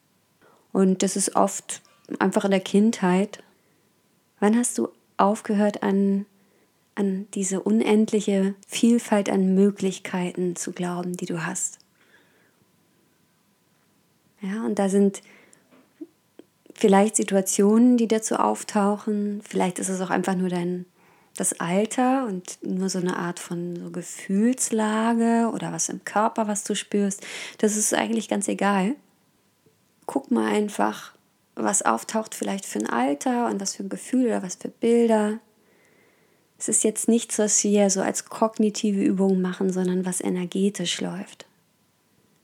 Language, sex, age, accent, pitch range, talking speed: German, female, 20-39, German, 185-220 Hz, 135 wpm